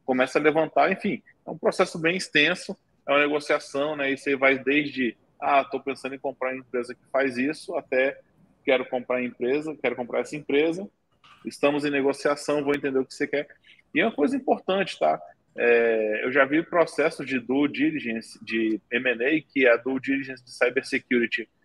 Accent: Brazilian